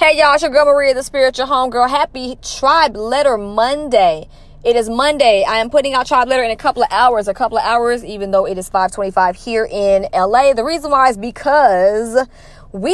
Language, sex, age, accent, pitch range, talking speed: English, female, 20-39, American, 205-260 Hz, 215 wpm